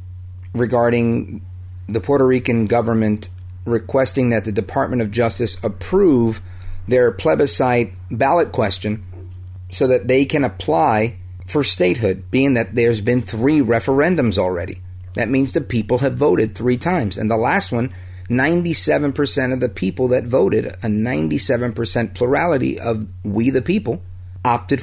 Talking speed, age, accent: 135 wpm, 40-59, American